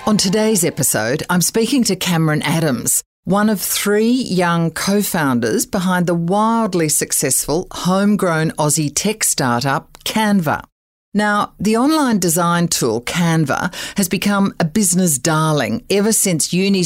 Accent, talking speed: Australian, 130 wpm